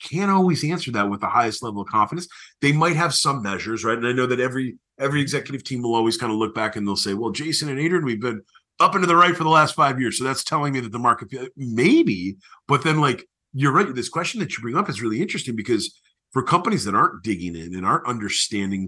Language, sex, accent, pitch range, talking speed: English, male, American, 110-145 Hz, 255 wpm